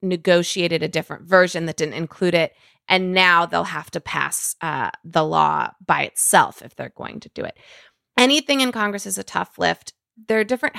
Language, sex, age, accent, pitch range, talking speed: English, female, 20-39, American, 165-210 Hz, 195 wpm